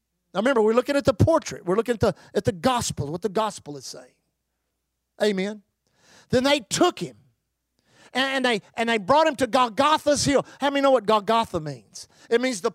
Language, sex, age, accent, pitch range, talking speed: English, male, 50-69, American, 210-285 Hz, 190 wpm